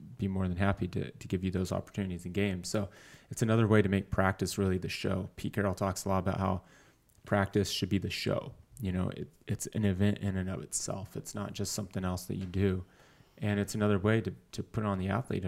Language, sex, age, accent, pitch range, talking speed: English, male, 30-49, American, 95-115 Hz, 235 wpm